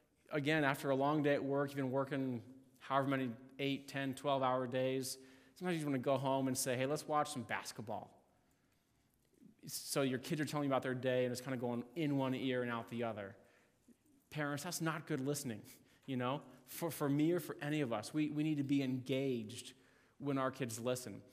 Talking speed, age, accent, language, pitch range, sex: 215 wpm, 20-39, American, English, 125-150 Hz, male